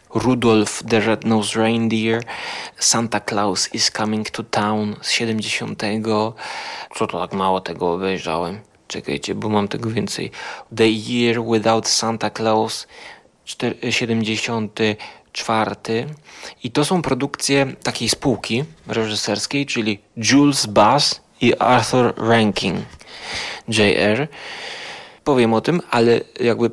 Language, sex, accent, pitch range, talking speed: Polish, male, native, 110-125 Hz, 110 wpm